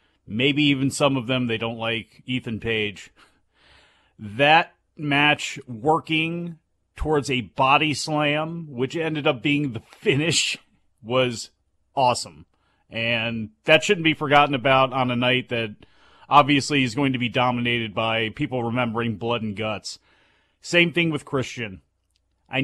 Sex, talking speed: male, 140 wpm